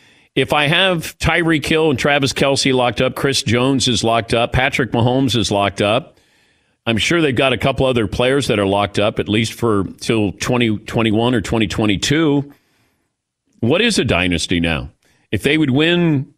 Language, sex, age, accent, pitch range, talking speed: English, male, 40-59, American, 105-145 Hz, 175 wpm